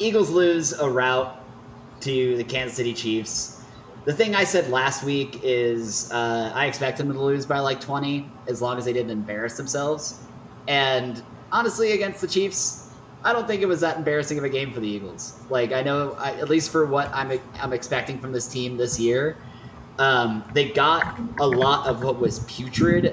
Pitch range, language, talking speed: 115-145 Hz, English, 195 wpm